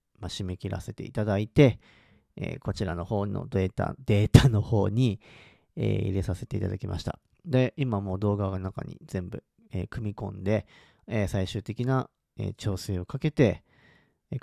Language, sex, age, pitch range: Japanese, male, 40-59, 95-125 Hz